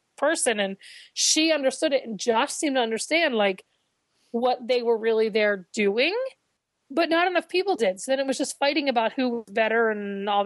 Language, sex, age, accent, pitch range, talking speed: English, female, 30-49, American, 225-275 Hz, 195 wpm